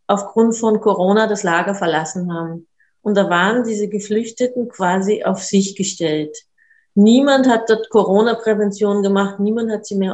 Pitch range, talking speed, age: 195-235 Hz, 150 wpm, 30-49